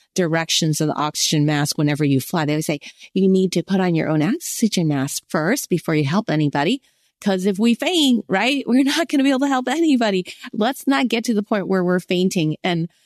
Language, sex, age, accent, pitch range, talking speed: English, female, 30-49, American, 155-225 Hz, 225 wpm